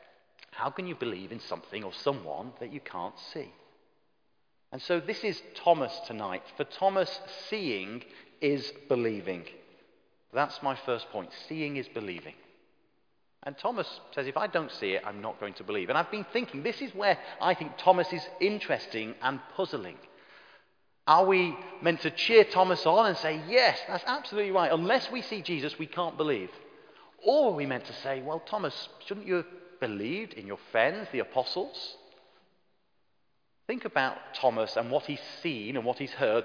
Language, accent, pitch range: English, British, 145-205 Hz